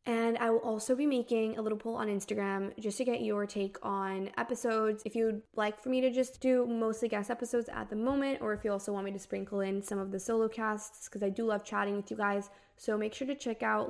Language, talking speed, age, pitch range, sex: English, 260 wpm, 20-39, 200-230 Hz, female